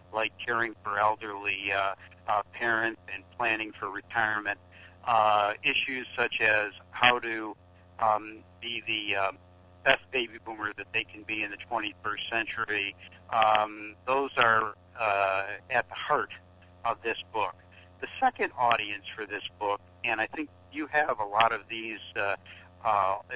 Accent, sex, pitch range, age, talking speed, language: American, male, 90-115 Hz, 60-79, 150 wpm, English